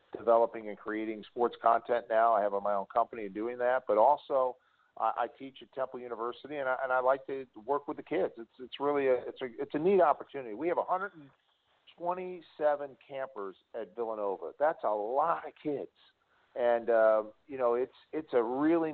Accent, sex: American, male